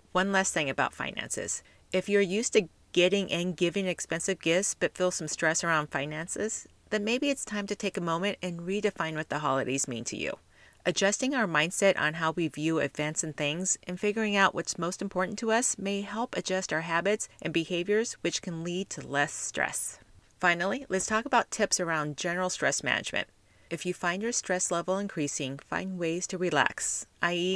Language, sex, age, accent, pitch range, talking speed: English, female, 40-59, American, 160-205 Hz, 190 wpm